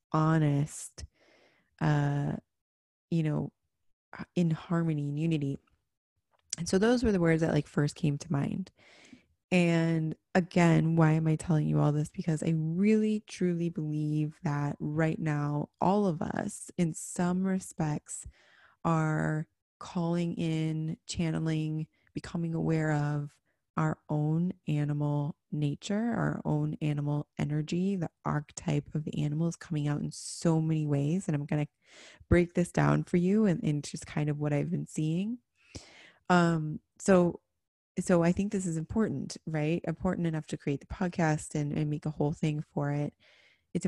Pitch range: 150-180 Hz